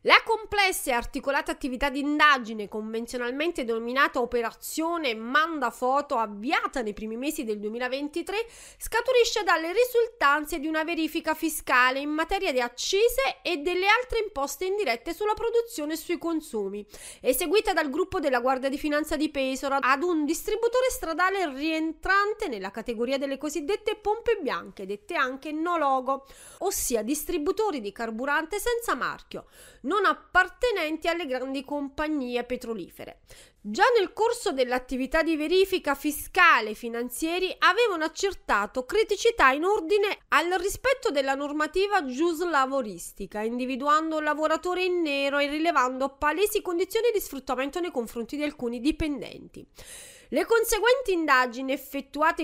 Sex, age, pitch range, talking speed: female, 30-49, 260-375 Hz, 130 wpm